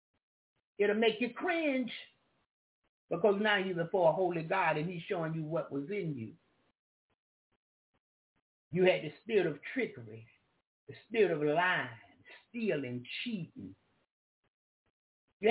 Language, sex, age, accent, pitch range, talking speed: English, male, 50-69, American, 180-245 Hz, 125 wpm